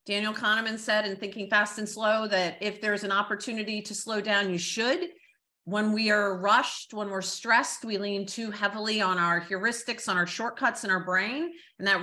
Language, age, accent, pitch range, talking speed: English, 40-59, American, 190-235 Hz, 200 wpm